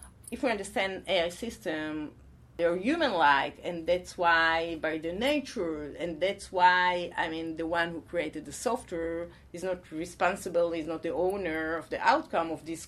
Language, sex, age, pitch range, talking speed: English, female, 30-49, 170-270 Hz, 170 wpm